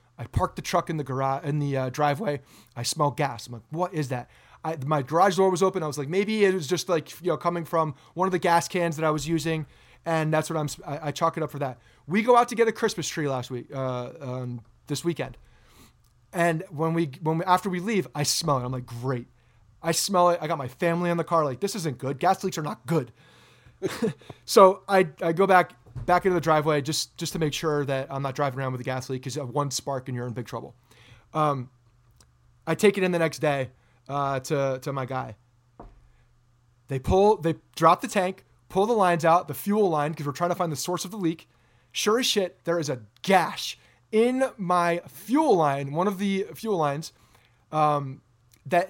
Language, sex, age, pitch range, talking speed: English, male, 30-49, 130-175 Hz, 235 wpm